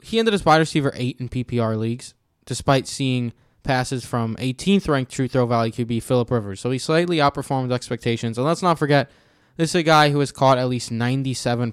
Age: 20-39